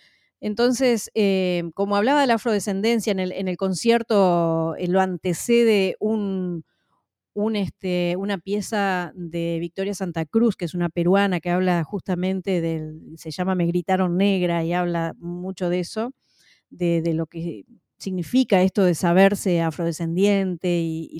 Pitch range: 175-220 Hz